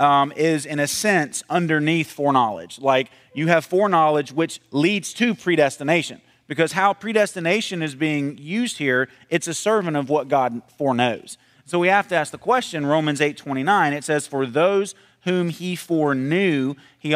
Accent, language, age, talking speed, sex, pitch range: American, English, 30-49, 170 wpm, male, 140-190 Hz